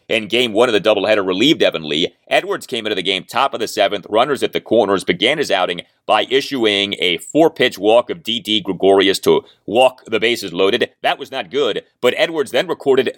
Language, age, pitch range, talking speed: English, 30-49, 115-180 Hz, 210 wpm